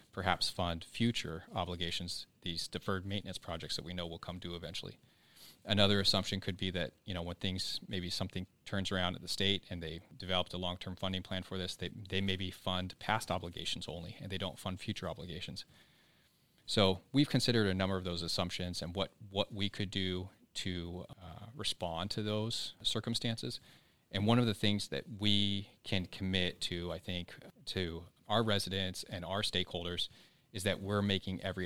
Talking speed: 180 wpm